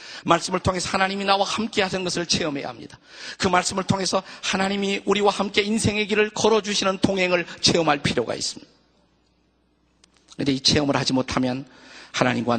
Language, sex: Korean, male